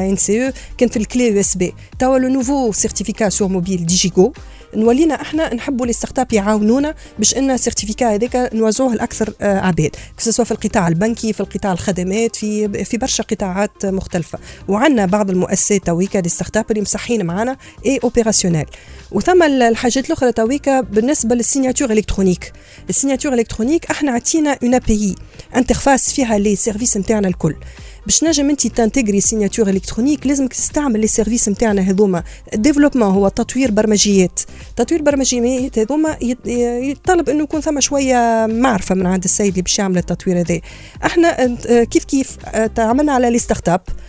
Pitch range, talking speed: 205-260 Hz, 145 wpm